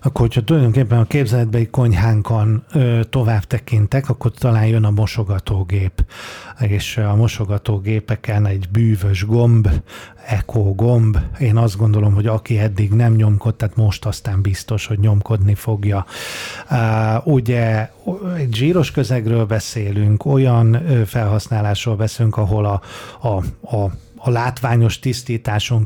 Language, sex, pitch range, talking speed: Hungarian, male, 110-125 Hz, 120 wpm